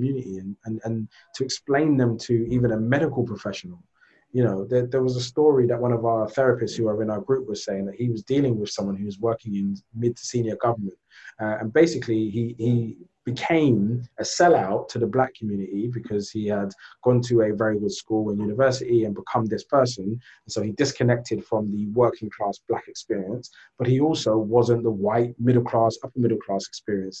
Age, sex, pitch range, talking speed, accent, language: 20-39, male, 105-130 Hz, 205 wpm, British, English